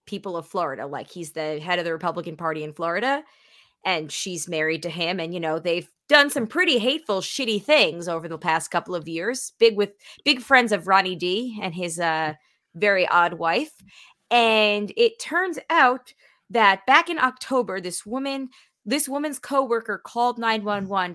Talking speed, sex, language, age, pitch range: 175 wpm, female, English, 20-39, 180-270 Hz